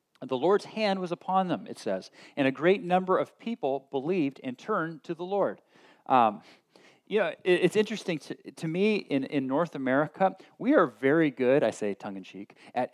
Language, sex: English, male